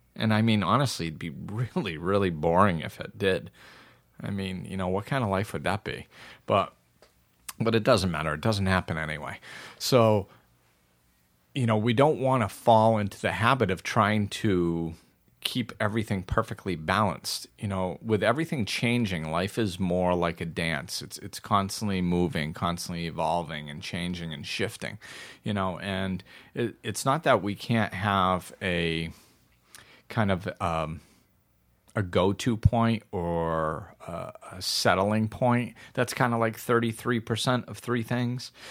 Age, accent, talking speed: 40-59, American, 155 wpm